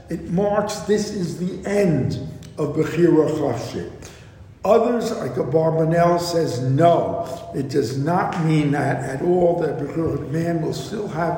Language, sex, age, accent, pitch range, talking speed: English, male, 60-79, American, 145-185 Hz, 140 wpm